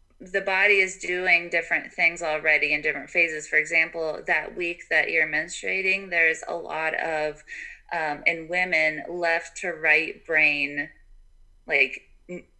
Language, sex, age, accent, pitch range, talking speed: English, female, 20-39, American, 155-190 Hz, 140 wpm